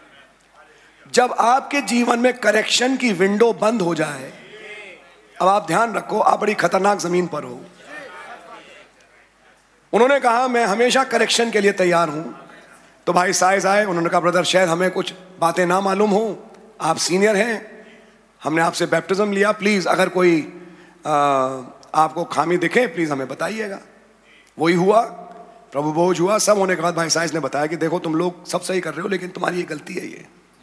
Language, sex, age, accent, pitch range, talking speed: English, male, 30-49, Indian, 170-215 Hz, 130 wpm